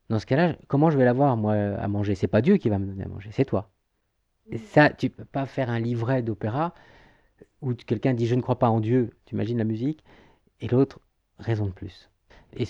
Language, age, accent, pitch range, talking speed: French, 40-59, French, 110-140 Hz, 240 wpm